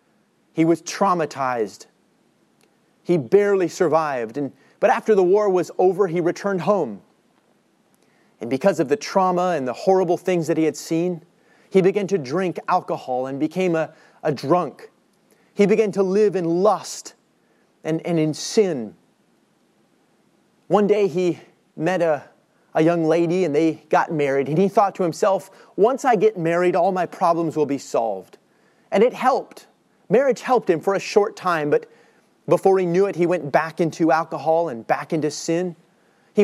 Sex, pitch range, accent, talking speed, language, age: male, 160-200 Hz, American, 165 wpm, English, 30-49